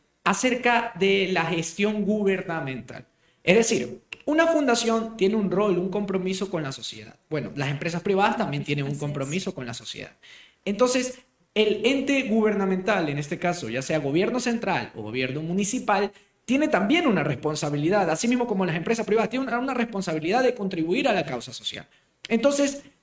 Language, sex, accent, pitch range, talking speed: Spanish, male, Colombian, 170-235 Hz, 160 wpm